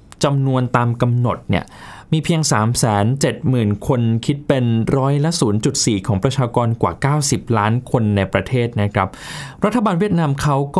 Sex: male